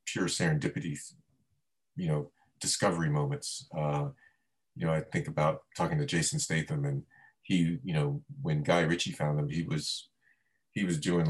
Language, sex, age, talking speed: English, male, 30-49, 160 wpm